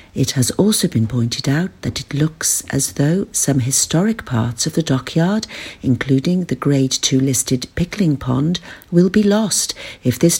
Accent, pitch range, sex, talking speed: British, 130-185 Hz, female, 165 wpm